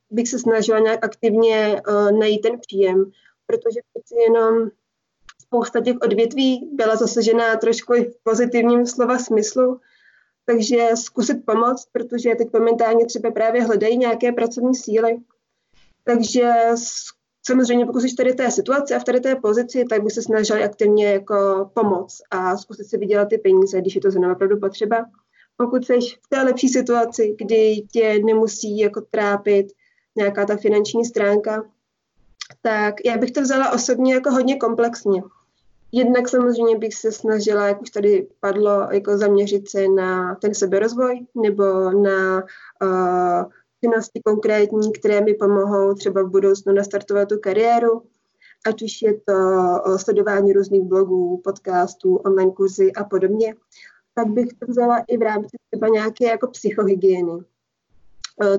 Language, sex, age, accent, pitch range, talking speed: Czech, female, 20-39, native, 200-235 Hz, 145 wpm